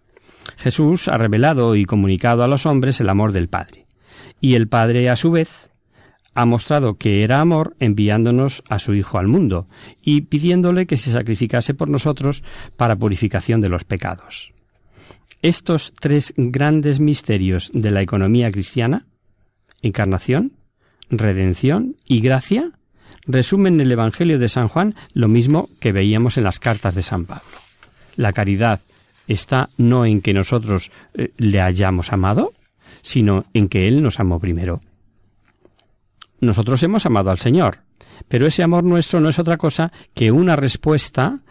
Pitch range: 100-140 Hz